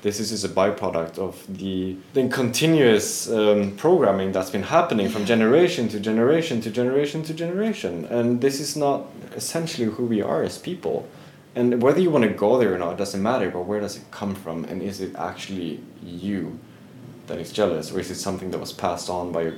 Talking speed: 210 wpm